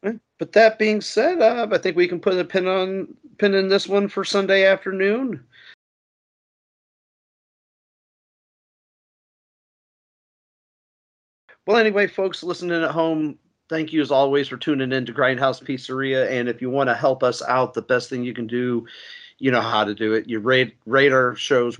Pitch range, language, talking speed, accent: 125-175 Hz, English, 170 wpm, American